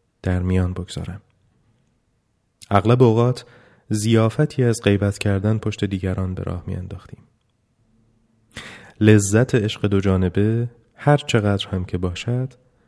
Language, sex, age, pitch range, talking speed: Persian, male, 30-49, 100-120 Hz, 105 wpm